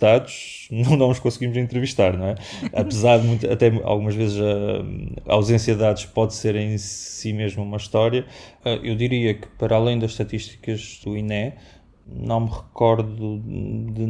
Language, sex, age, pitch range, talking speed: Portuguese, male, 20-39, 100-110 Hz, 165 wpm